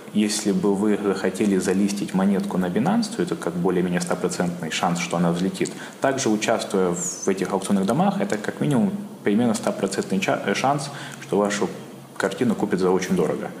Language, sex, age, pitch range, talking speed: Russian, male, 20-39, 95-115 Hz, 160 wpm